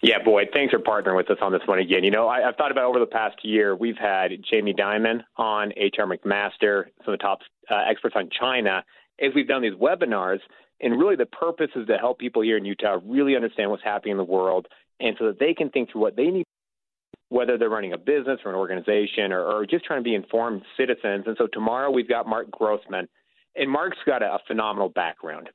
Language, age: English, 40-59